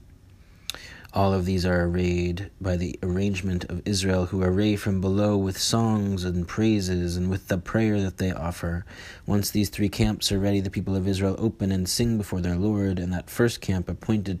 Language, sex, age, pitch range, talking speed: English, male, 30-49, 90-105 Hz, 190 wpm